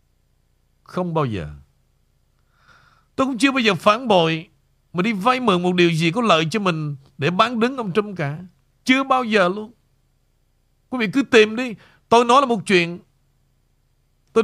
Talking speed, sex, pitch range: 175 wpm, male, 140-220 Hz